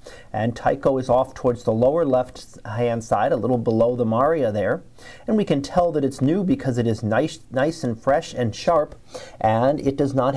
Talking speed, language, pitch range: 205 wpm, English, 120-145 Hz